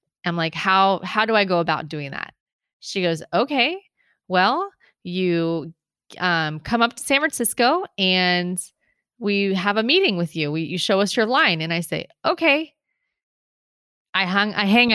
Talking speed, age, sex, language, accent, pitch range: 170 wpm, 20-39, female, English, American, 175-230 Hz